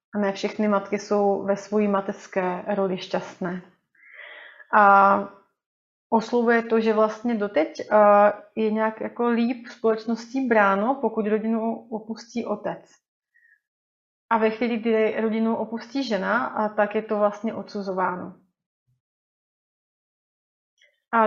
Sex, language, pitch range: female, Czech, 200-225 Hz